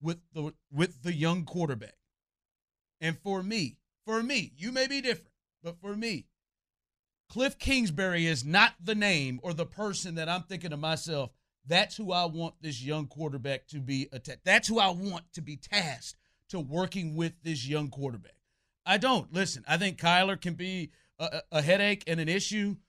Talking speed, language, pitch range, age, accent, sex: 180 wpm, English, 155-195 Hz, 40-59, American, male